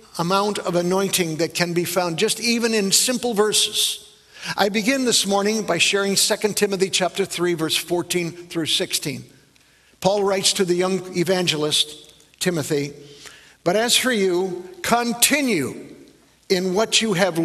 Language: English